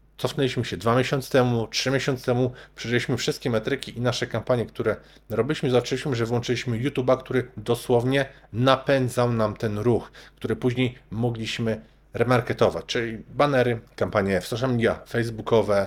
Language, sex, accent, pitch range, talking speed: Polish, male, native, 115-130 Hz, 140 wpm